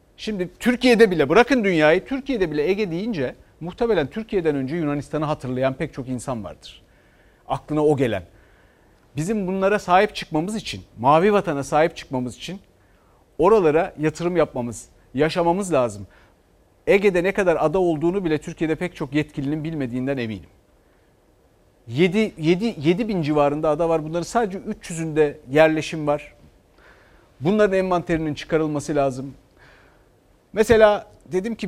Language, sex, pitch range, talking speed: Turkish, male, 145-190 Hz, 125 wpm